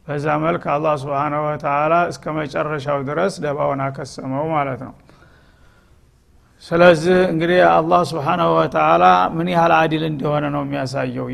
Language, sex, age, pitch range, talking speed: Amharic, male, 50-69, 145-170 Hz, 130 wpm